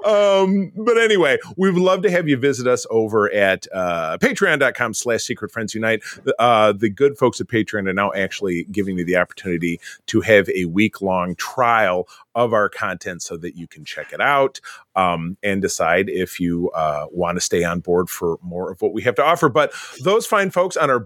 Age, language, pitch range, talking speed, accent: 30-49, English, 100-145 Hz, 205 wpm, American